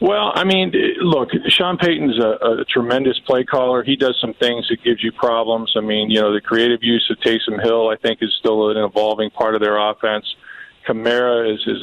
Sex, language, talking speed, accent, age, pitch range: male, English, 215 wpm, American, 40-59, 110-125 Hz